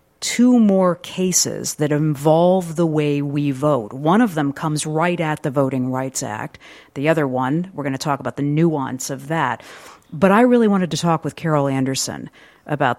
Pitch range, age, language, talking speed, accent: 140-175 Hz, 50-69, English, 185 wpm, American